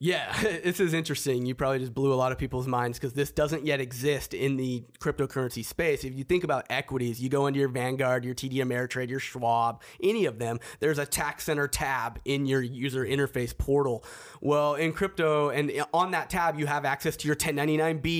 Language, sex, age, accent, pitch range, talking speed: English, male, 30-49, American, 130-150 Hz, 210 wpm